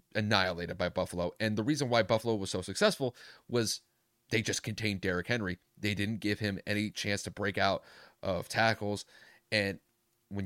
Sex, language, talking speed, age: male, English, 170 wpm, 30-49